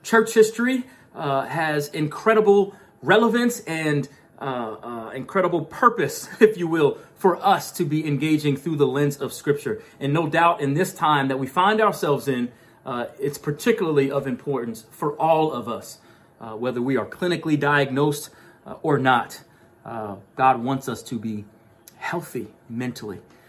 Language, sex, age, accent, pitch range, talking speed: English, male, 30-49, American, 130-165 Hz, 155 wpm